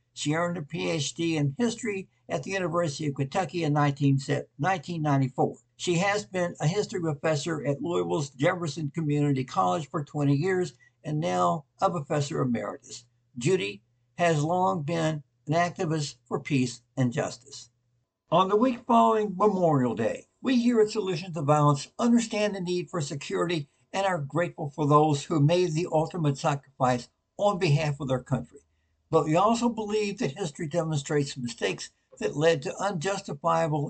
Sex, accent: male, American